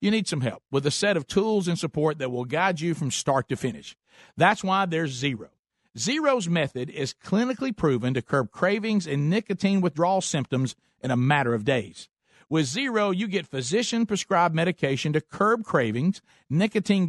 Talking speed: 180 wpm